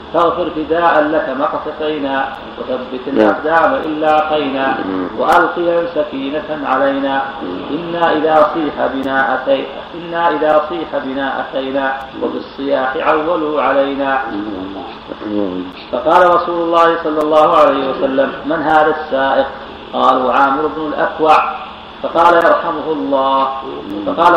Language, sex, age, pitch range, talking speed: Arabic, male, 40-59, 135-165 Hz, 105 wpm